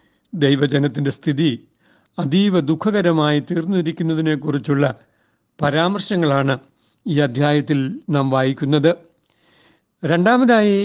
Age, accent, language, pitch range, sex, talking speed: 60-79, native, Malayalam, 145-175 Hz, male, 60 wpm